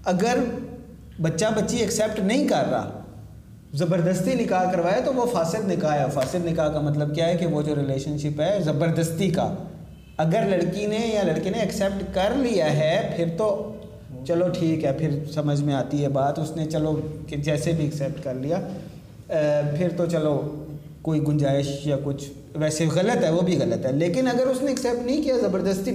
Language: Urdu